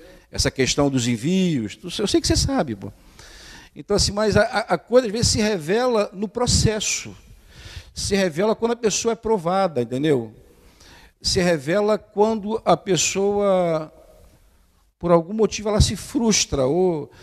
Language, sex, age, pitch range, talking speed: Portuguese, male, 50-69, 135-190 Hz, 145 wpm